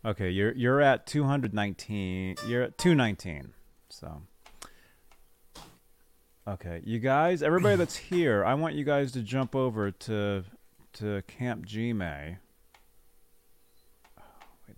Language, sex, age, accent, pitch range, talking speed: English, male, 40-59, American, 85-135 Hz, 115 wpm